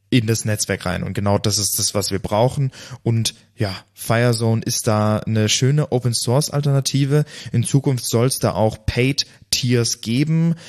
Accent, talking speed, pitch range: German, 155 wpm, 105-125 Hz